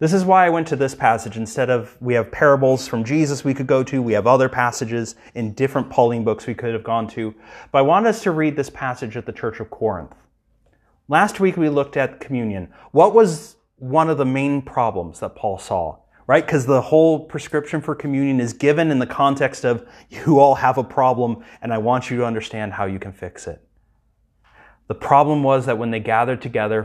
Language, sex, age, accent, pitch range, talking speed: English, male, 30-49, American, 105-130 Hz, 220 wpm